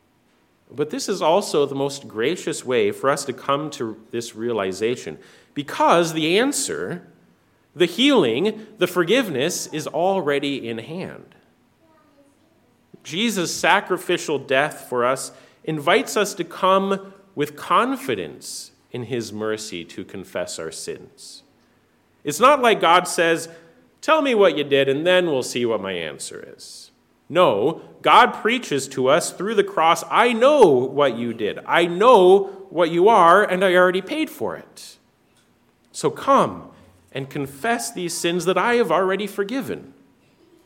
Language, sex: English, male